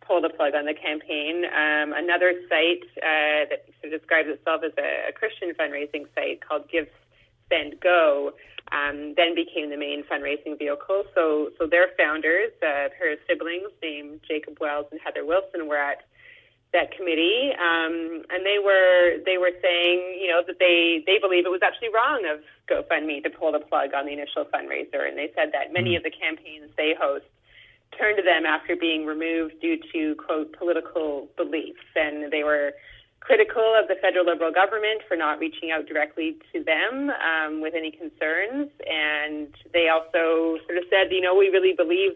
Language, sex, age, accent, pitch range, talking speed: English, female, 30-49, American, 150-180 Hz, 180 wpm